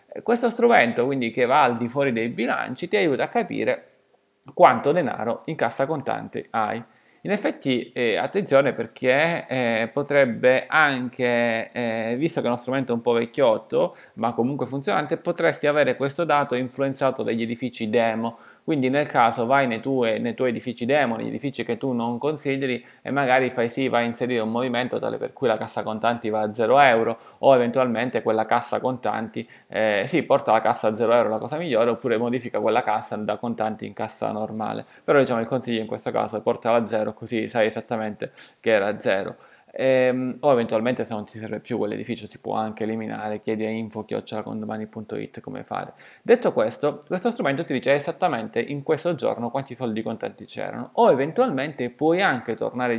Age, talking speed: 20-39, 185 wpm